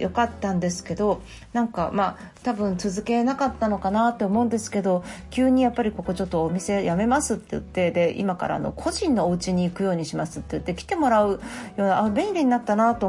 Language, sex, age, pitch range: Japanese, female, 40-59, 190-275 Hz